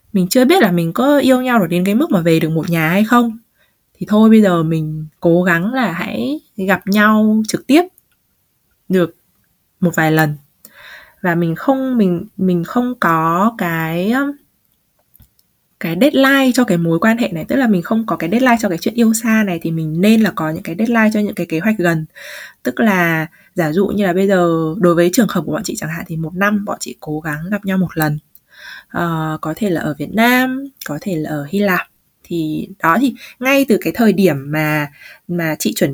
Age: 20-39